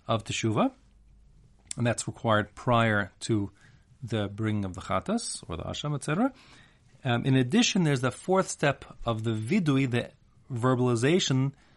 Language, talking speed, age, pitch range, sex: English, 145 wpm, 40-59, 105-135 Hz, male